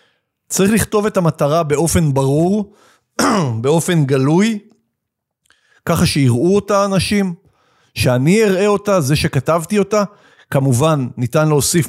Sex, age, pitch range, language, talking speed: male, 50-69, 135-180 Hz, Hebrew, 105 wpm